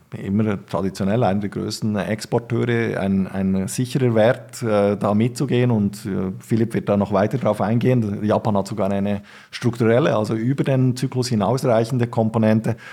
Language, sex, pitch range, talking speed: German, male, 100-120 Hz, 155 wpm